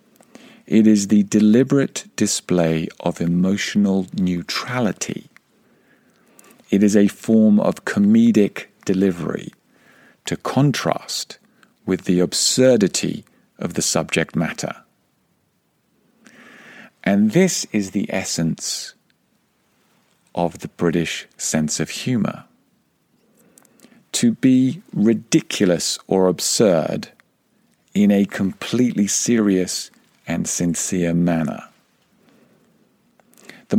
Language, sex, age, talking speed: English, male, 50-69, 85 wpm